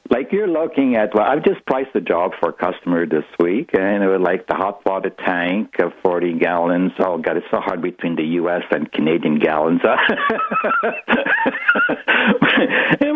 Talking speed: 175 wpm